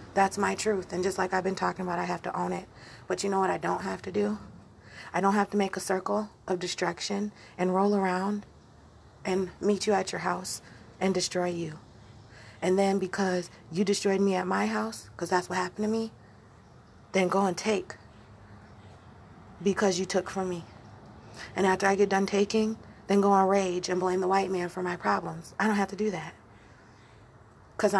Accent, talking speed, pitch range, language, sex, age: American, 200 wpm, 120-200 Hz, English, female, 30-49